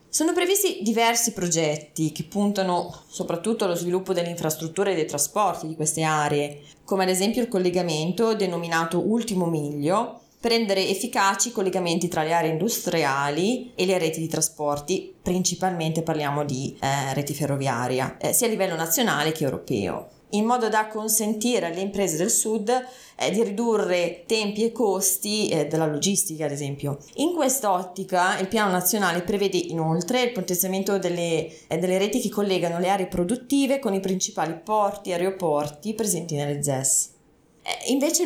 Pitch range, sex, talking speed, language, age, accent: 160-210 Hz, female, 155 wpm, Italian, 20-39, native